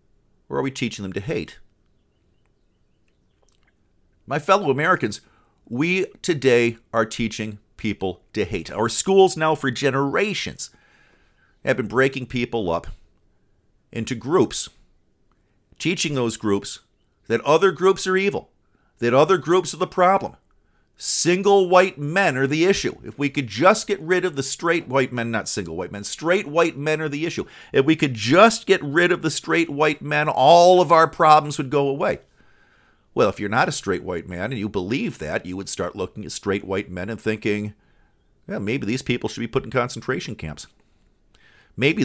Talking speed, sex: 175 wpm, male